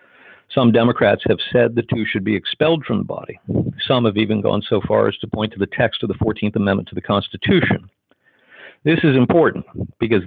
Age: 50-69